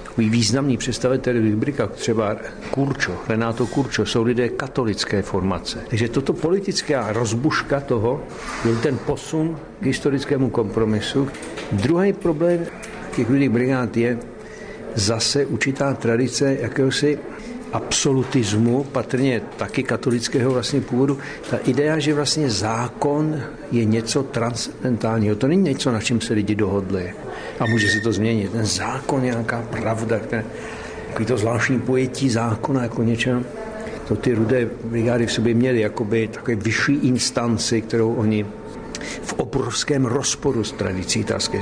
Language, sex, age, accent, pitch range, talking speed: Czech, male, 60-79, native, 115-140 Hz, 125 wpm